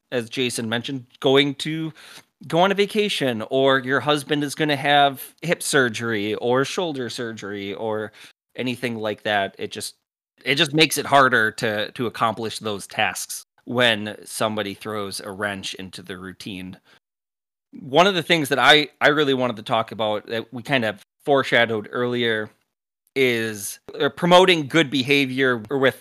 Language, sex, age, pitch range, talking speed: English, male, 30-49, 115-150 Hz, 155 wpm